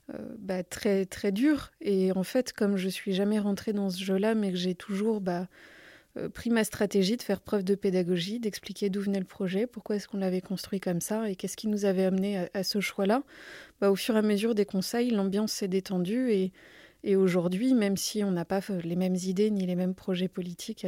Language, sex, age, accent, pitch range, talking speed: French, female, 30-49, French, 190-220 Hz, 235 wpm